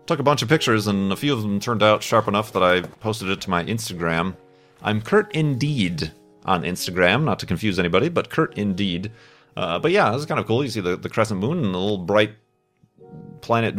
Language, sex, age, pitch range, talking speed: English, male, 30-49, 90-115 Hz, 225 wpm